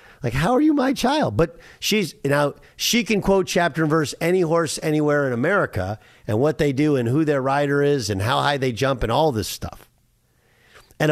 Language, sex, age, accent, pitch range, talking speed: English, male, 50-69, American, 130-185 Hz, 210 wpm